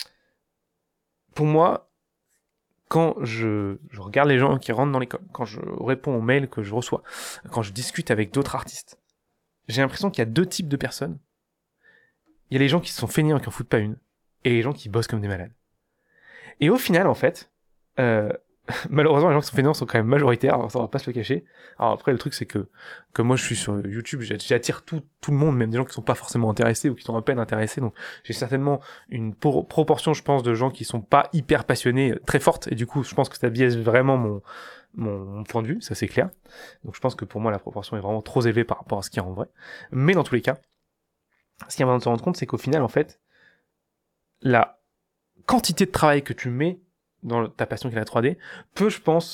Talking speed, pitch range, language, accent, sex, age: 245 wpm, 115-150 Hz, French, French, male, 20-39